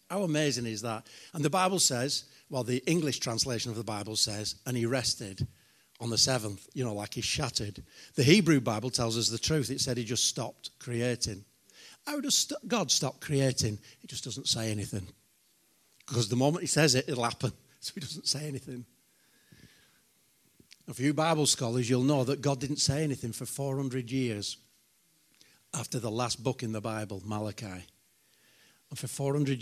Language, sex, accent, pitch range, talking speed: English, male, British, 110-140 Hz, 180 wpm